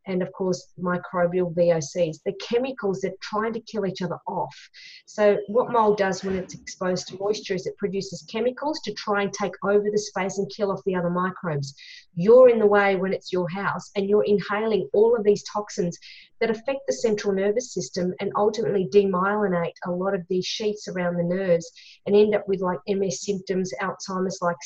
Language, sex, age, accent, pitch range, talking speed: English, female, 40-59, Australian, 185-210 Hz, 200 wpm